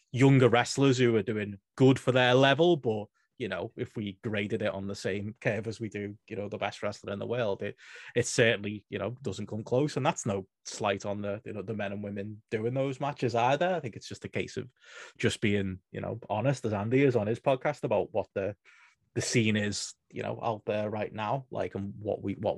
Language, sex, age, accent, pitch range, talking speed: English, male, 20-39, British, 105-135 Hz, 240 wpm